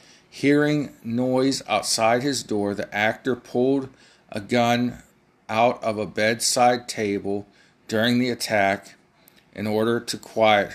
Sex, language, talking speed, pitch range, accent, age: male, English, 125 wpm, 105-125 Hz, American, 50-69